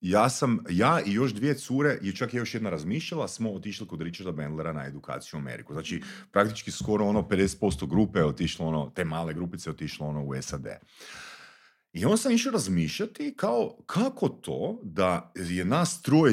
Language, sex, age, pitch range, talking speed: Croatian, male, 40-59, 95-155 Hz, 185 wpm